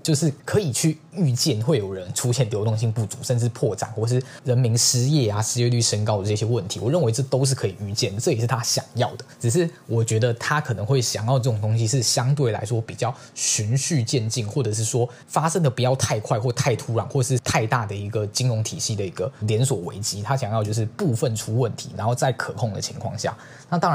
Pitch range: 110-135 Hz